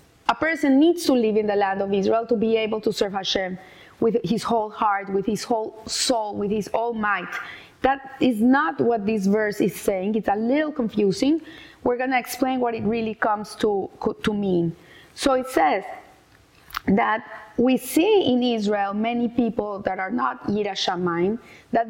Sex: female